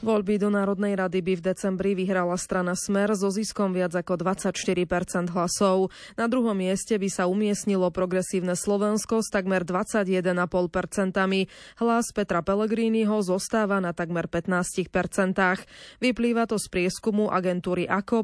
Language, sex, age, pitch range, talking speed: Slovak, female, 20-39, 180-210 Hz, 130 wpm